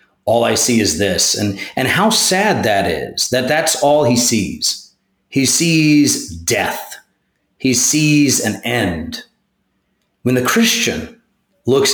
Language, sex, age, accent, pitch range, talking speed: English, male, 30-49, American, 115-155 Hz, 135 wpm